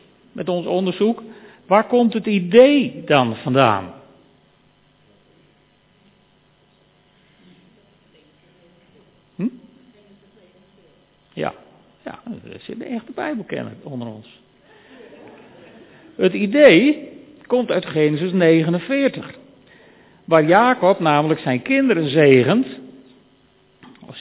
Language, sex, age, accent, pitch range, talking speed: Dutch, male, 50-69, Dutch, 140-220 Hz, 80 wpm